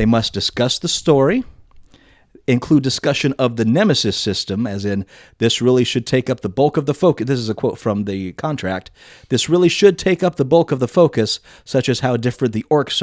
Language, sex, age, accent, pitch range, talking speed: English, male, 30-49, American, 110-155 Hz, 210 wpm